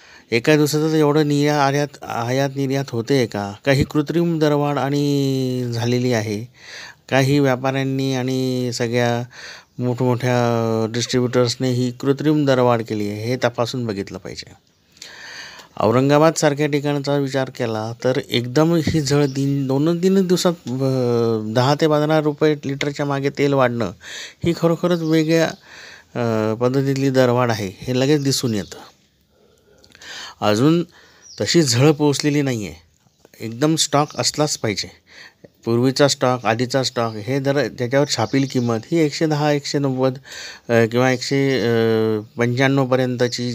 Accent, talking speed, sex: native, 120 wpm, male